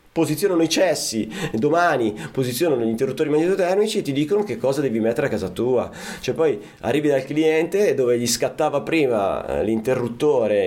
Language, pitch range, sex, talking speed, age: Italian, 115-165 Hz, male, 155 wpm, 30-49